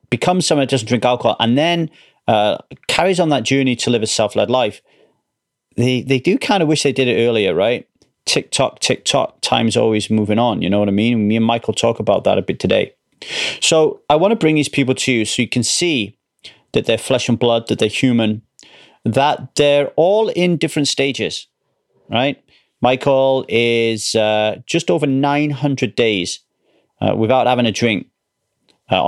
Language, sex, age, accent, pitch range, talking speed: English, male, 30-49, British, 115-145 Hz, 185 wpm